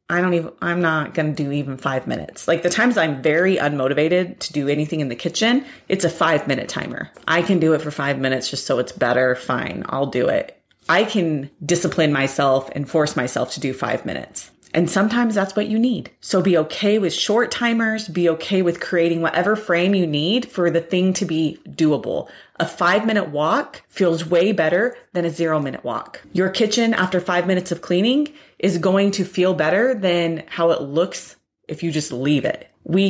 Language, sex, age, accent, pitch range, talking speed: English, female, 30-49, American, 155-195 Hz, 205 wpm